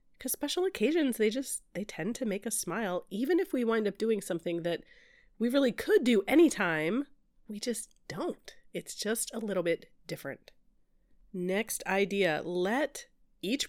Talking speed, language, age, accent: 160 wpm, English, 30-49, American